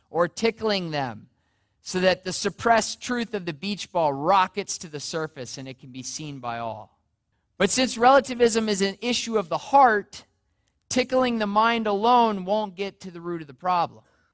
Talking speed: 185 wpm